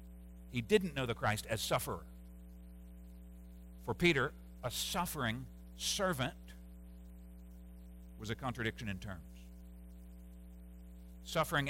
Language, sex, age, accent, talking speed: English, male, 60-79, American, 90 wpm